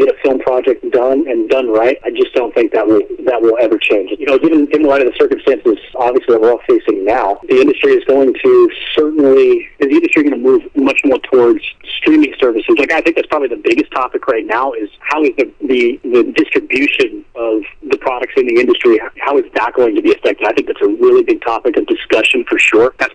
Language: English